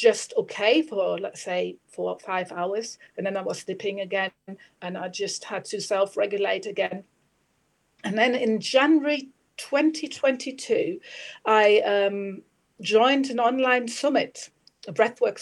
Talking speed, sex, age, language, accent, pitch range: 135 wpm, female, 40-59, English, British, 195-280 Hz